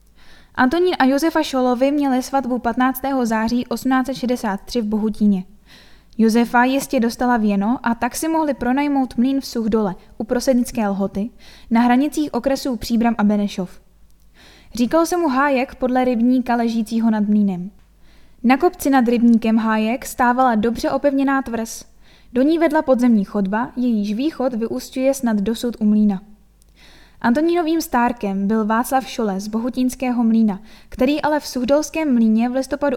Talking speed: 140 wpm